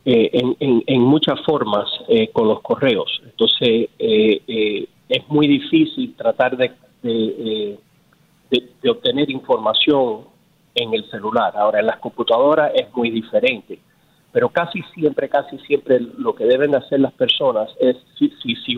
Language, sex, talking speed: Spanish, male, 155 wpm